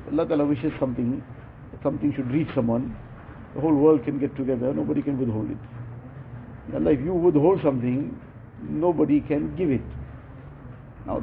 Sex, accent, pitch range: male, Indian, 125-150 Hz